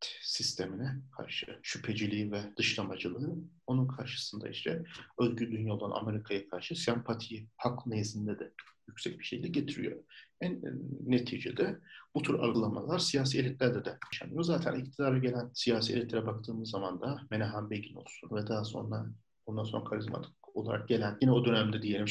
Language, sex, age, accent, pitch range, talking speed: Turkish, male, 50-69, native, 110-135 Hz, 145 wpm